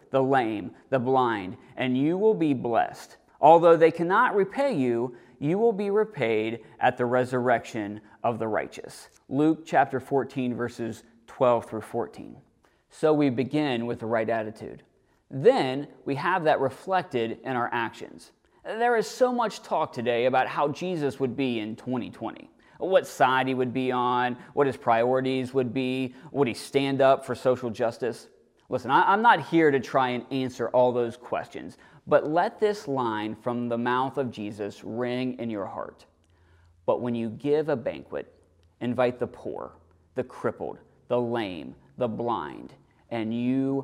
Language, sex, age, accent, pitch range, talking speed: English, male, 30-49, American, 120-150 Hz, 160 wpm